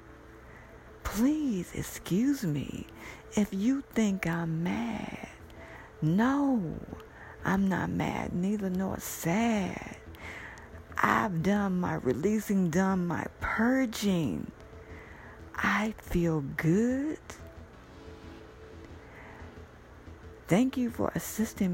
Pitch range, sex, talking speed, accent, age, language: 135-205 Hz, female, 80 wpm, American, 50-69, English